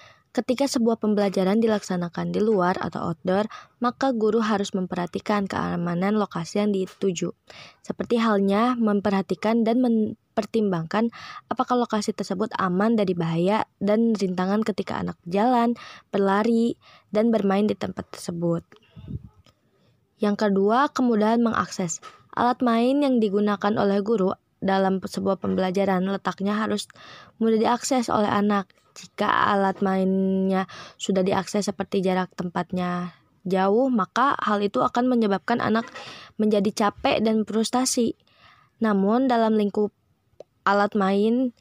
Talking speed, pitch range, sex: 115 wpm, 190-225 Hz, female